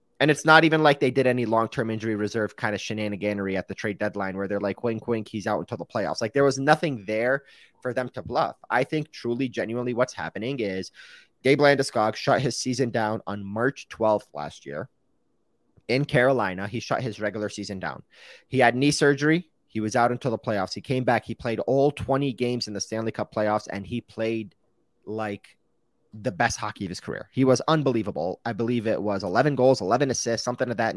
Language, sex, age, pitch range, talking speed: English, male, 30-49, 105-130 Hz, 215 wpm